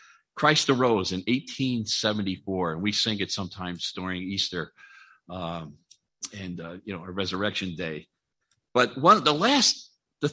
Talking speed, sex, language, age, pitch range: 140 wpm, male, English, 50-69, 100-155 Hz